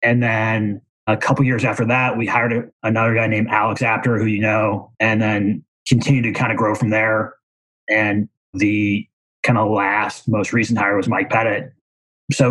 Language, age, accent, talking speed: English, 30-49, American, 180 wpm